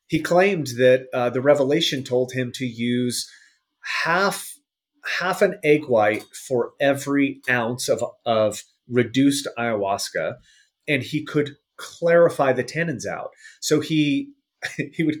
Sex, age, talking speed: male, 30-49, 130 wpm